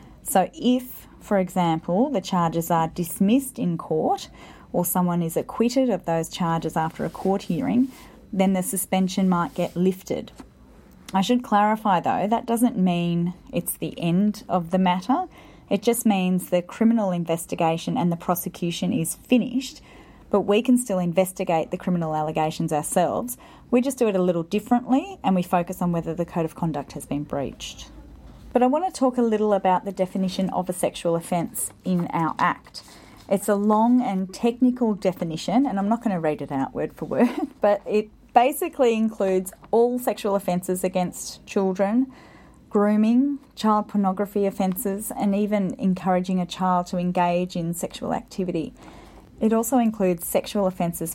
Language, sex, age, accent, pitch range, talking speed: English, female, 30-49, Australian, 175-225 Hz, 165 wpm